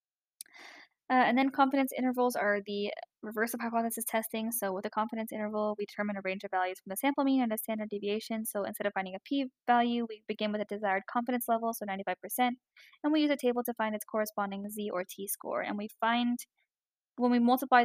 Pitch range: 205-245 Hz